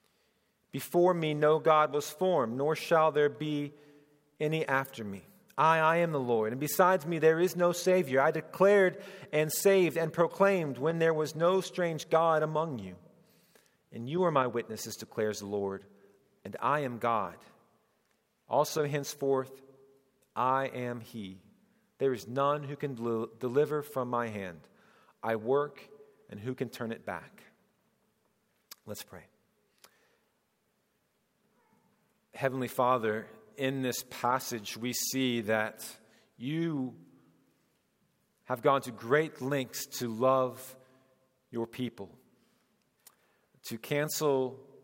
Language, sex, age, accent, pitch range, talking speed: English, male, 40-59, American, 120-150 Hz, 125 wpm